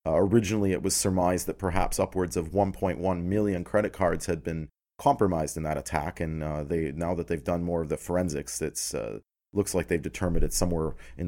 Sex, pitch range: male, 80-100 Hz